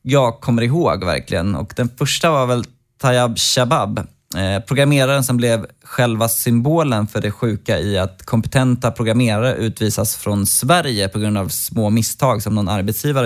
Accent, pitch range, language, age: native, 105-130 Hz, Swedish, 20-39